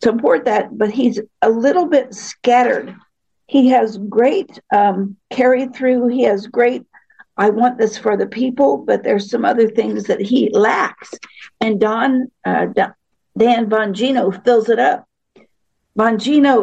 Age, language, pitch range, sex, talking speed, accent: 50-69, English, 215-250 Hz, female, 150 wpm, American